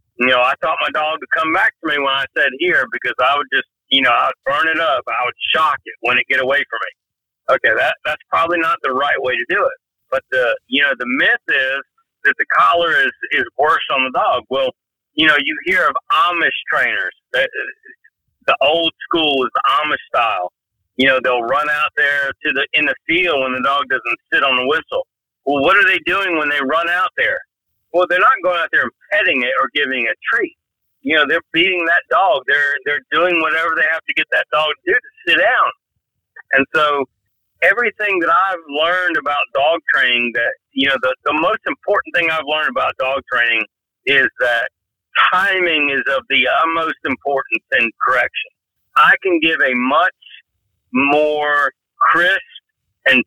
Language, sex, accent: English, male, American